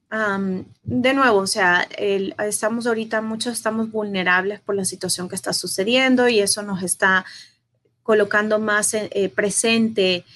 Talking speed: 145 wpm